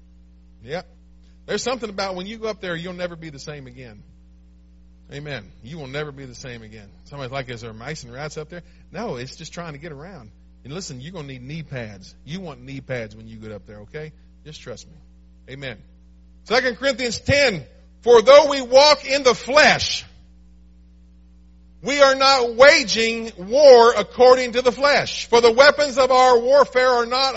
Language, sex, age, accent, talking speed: English, male, 50-69, American, 195 wpm